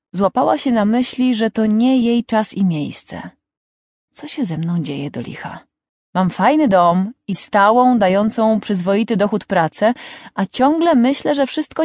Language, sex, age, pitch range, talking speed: English, female, 30-49, 180-240 Hz, 160 wpm